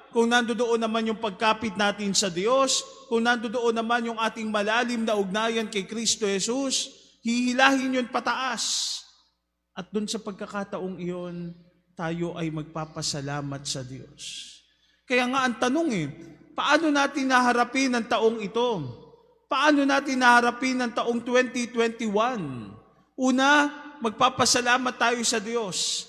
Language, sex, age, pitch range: Filipino, male, 20-39, 215-255 Hz